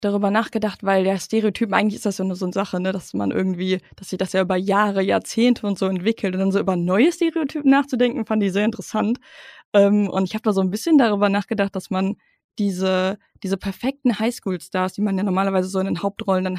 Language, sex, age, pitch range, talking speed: German, female, 20-39, 190-230 Hz, 230 wpm